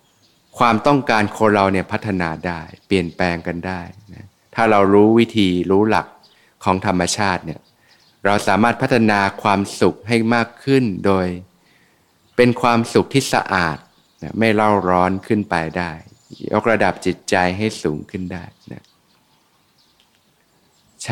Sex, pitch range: male, 90-110 Hz